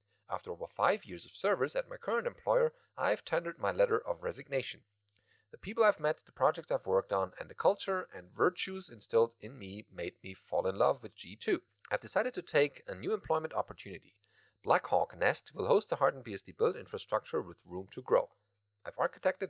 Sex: male